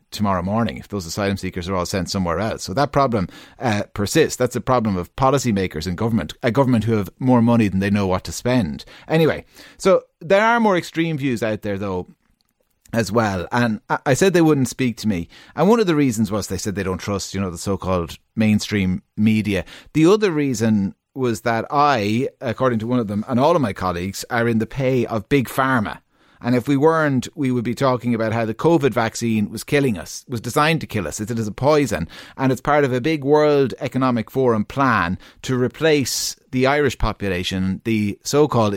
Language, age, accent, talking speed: English, 30-49, Irish, 210 wpm